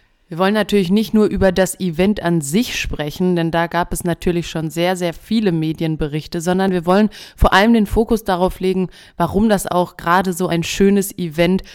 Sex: female